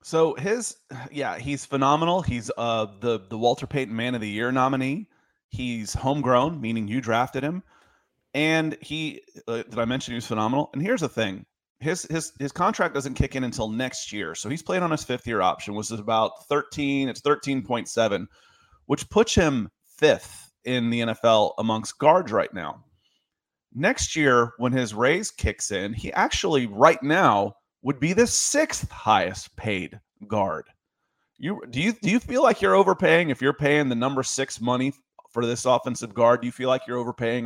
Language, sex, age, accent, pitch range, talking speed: English, male, 30-49, American, 115-155 Hz, 185 wpm